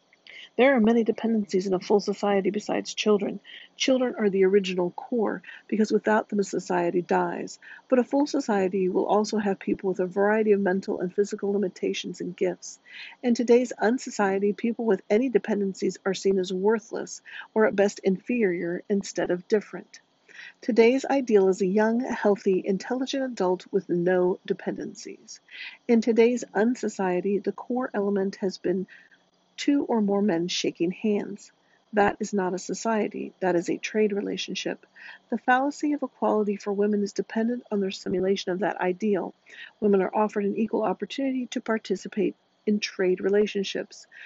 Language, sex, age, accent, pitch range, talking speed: English, female, 50-69, American, 190-225 Hz, 160 wpm